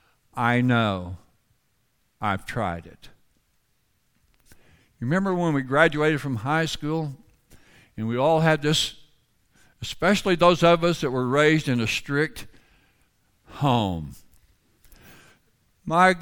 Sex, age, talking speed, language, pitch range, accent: male, 60-79, 105 wpm, English, 120-155 Hz, American